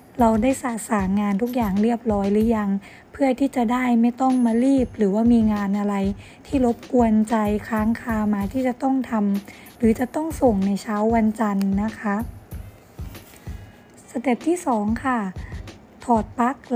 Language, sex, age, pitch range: Thai, female, 20-39, 210-250 Hz